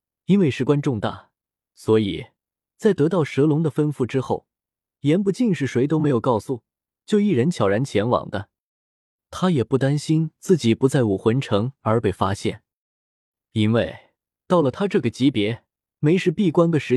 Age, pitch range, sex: 20-39, 110-160 Hz, male